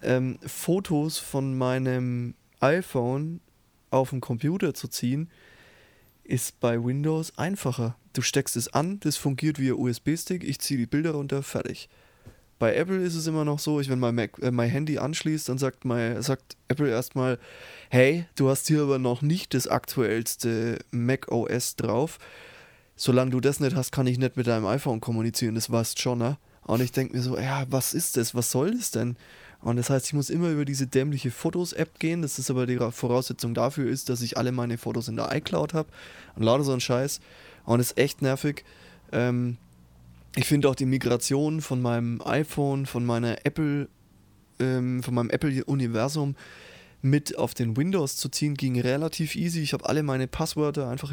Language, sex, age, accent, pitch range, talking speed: German, male, 20-39, German, 120-145 Hz, 185 wpm